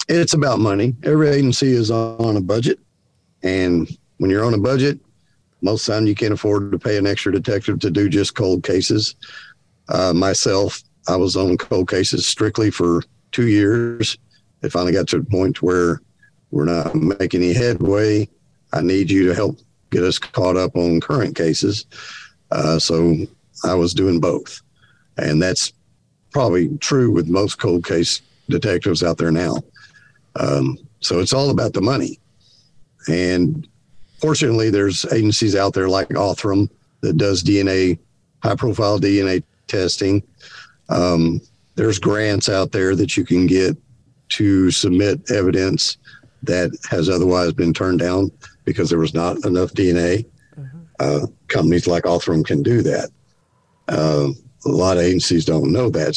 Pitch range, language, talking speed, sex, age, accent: 85-110 Hz, English, 155 wpm, male, 50-69, American